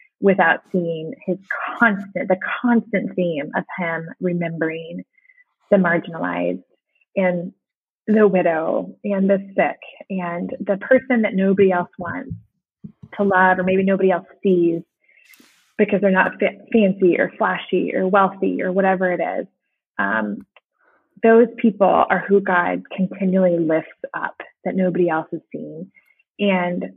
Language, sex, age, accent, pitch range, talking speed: English, female, 20-39, American, 180-210 Hz, 130 wpm